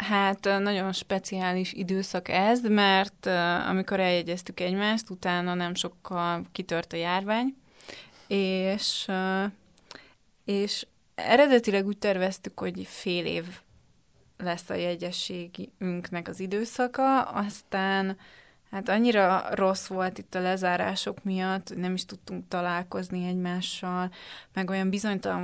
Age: 20-39